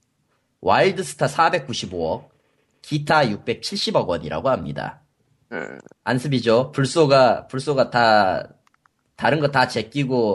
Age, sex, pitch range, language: 30-49, male, 110-160 Hz, Korean